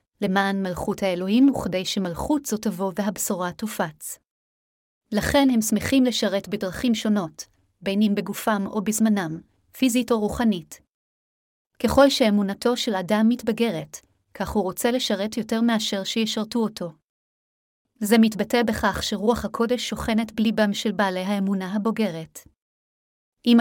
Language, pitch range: Hebrew, 195-235 Hz